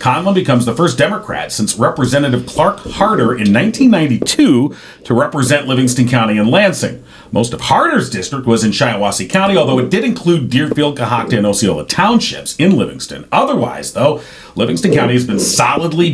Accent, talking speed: American, 160 wpm